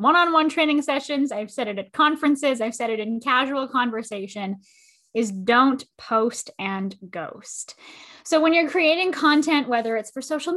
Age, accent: 10-29, American